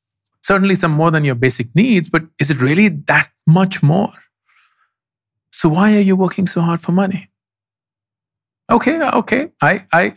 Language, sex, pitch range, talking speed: English, male, 125-195 Hz, 160 wpm